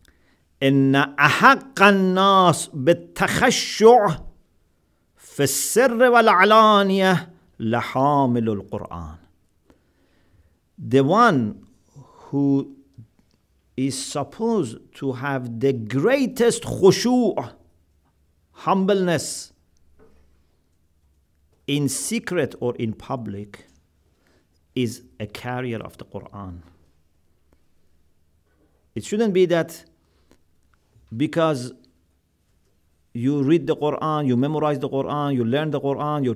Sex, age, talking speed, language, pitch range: male, 50-69, 80 wpm, English, 90-145 Hz